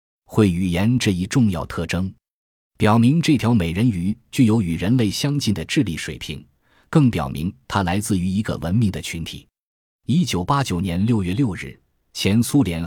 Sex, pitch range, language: male, 85-115 Hz, Chinese